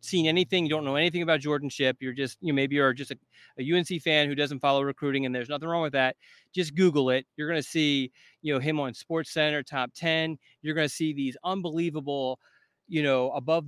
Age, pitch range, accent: 30-49, 140-170 Hz, American